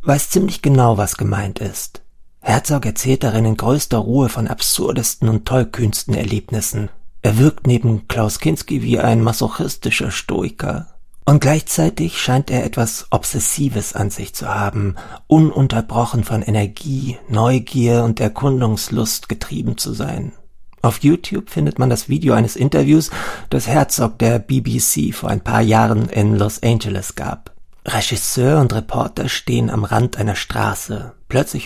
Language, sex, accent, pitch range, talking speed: German, male, German, 105-130 Hz, 140 wpm